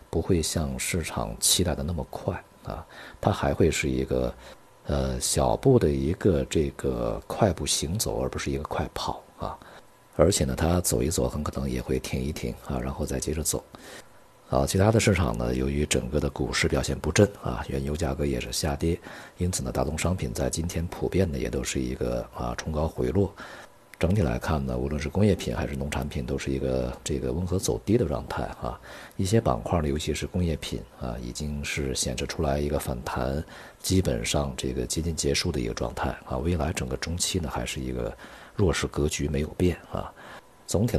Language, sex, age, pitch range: Chinese, male, 50-69, 65-85 Hz